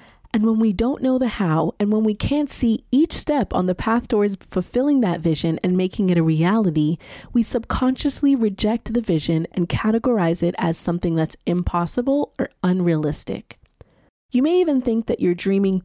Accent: American